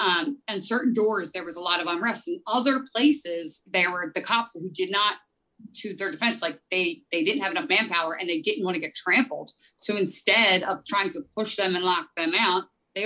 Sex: female